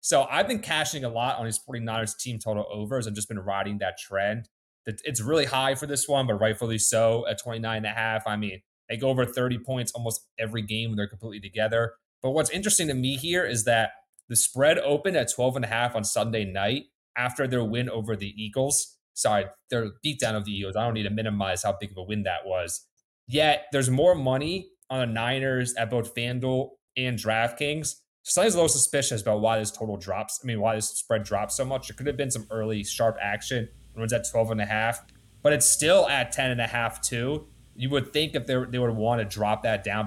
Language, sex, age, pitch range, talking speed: English, male, 30-49, 110-135 Hz, 230 wpm